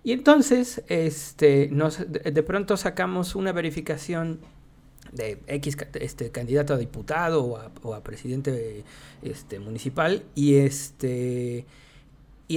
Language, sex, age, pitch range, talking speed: Spanish, male, 40-59, 135-170 Hz, 120 wpm